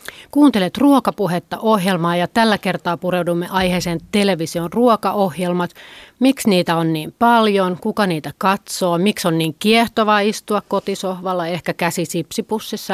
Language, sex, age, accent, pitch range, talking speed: Finnish, female, 30-49, native, 175-215 Hz, 125 wpm